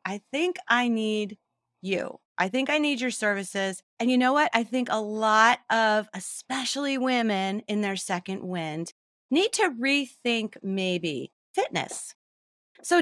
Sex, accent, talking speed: female, American, 145 wpm